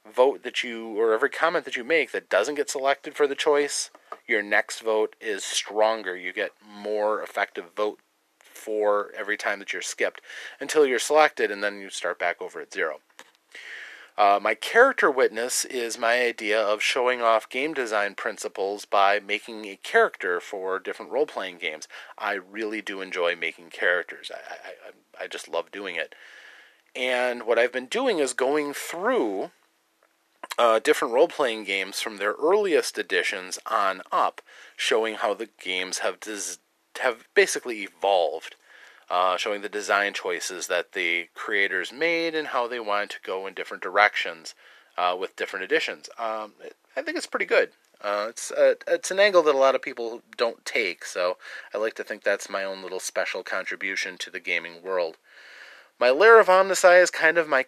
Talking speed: 175 wpm